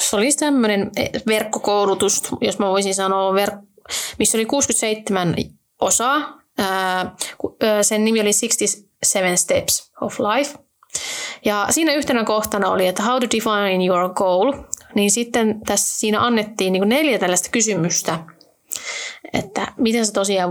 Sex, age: female, 30-49